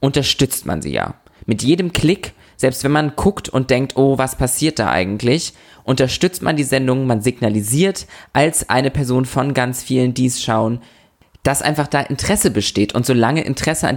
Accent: German